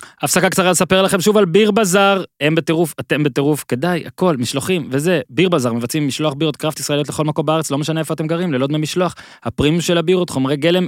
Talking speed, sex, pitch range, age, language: 210 wpm, male, 125-165 Hz, 20-39, Hebrew